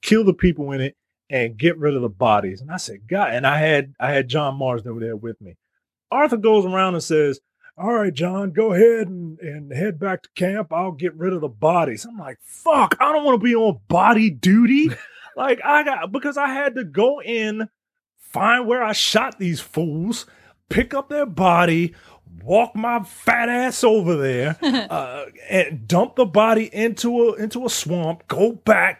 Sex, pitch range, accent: male, 130-220 Hz, American